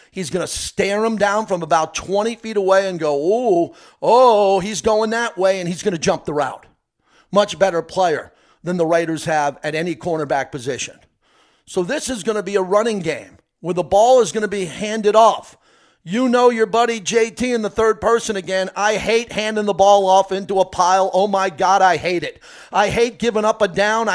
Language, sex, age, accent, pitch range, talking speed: English, male, 40-59, American, 180-230 Hz, 215 wpm